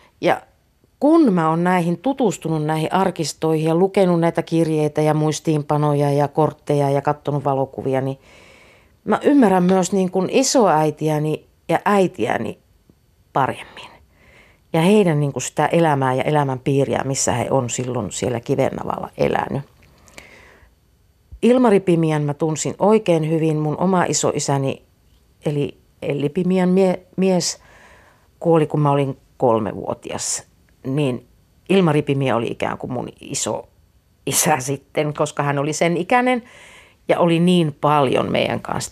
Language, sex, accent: Finnish, female, native